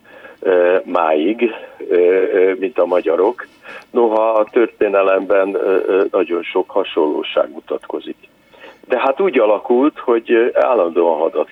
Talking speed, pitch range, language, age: 95 wpm, 295-475 Hz, Hungarian, 50-69